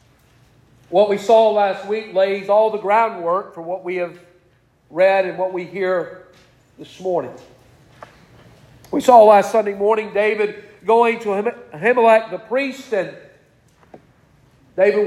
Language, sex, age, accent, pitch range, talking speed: English, male, 40-59, American, 135-220 Hz, 130 wpm